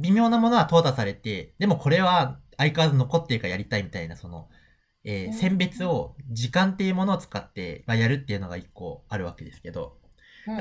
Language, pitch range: Japanese, 105-170 Hz